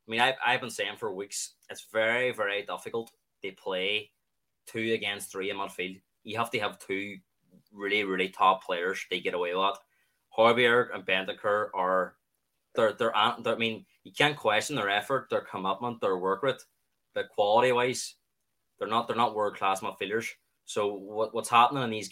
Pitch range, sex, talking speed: 100-130 Hz, male, 185 wpm